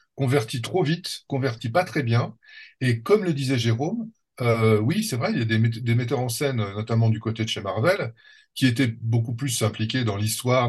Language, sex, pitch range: French, male, 110-130 Hz